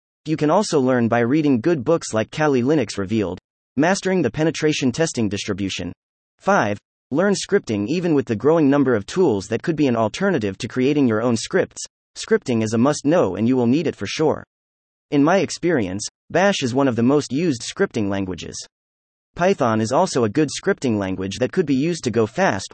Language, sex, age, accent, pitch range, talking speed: English, male, 30-49, American, 105-155 Hz, 195 wpm